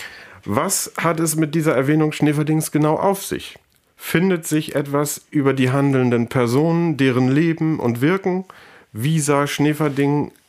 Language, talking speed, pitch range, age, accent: German, 135 wpm, 110-155 Hz, 40-59, German